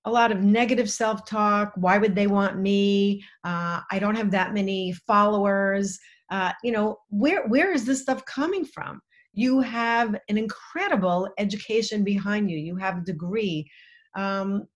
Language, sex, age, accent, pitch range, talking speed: English, female, 40-59, American, 190-230 Hz, 160 wpm